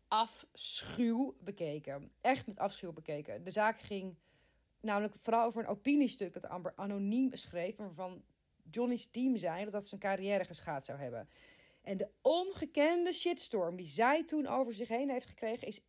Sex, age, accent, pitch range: female, 30-49, Dutch, 180-225 Hz